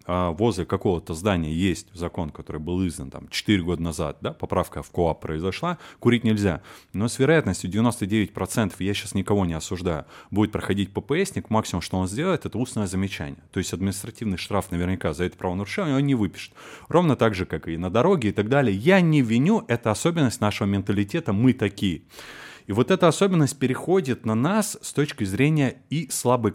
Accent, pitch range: native, 95-130 Hz